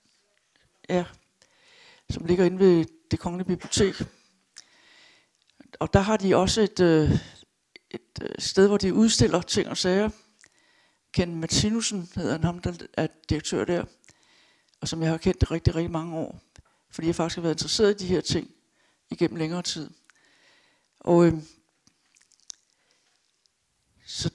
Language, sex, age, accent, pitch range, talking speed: Danish, female, 60-79, native, 170-215 Hz, 140 wpm